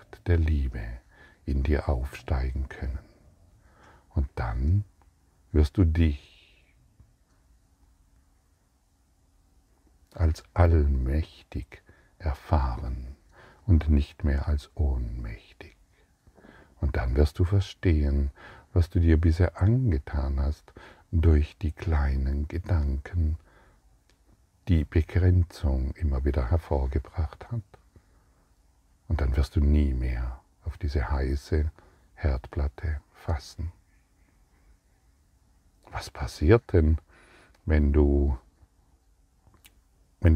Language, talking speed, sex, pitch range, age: German, 80 wpm, male, 70-90 Hz, 60-79